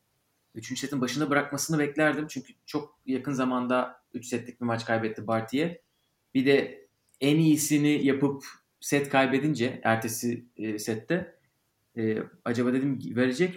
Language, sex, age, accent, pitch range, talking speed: Turkish, male, 30-49, native, 120-145 Hz, 130 wpm